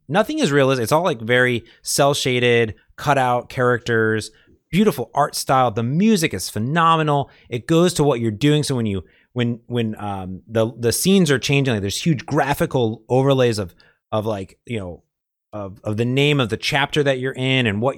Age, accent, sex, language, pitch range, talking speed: 30-49, American, male, English, 115-145 Hz, 190 wpm